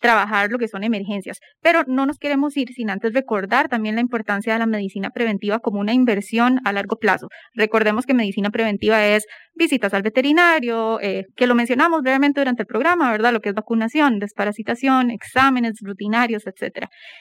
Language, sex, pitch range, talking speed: English, female, 215-260 Hz, 180 wpm